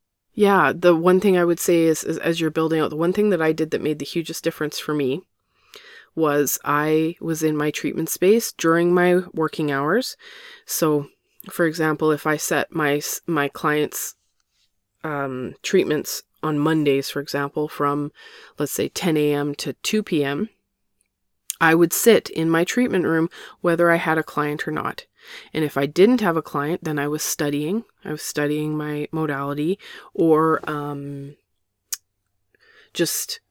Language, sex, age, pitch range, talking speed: English, female, 20-39, 150-175 Hz, 165 wpm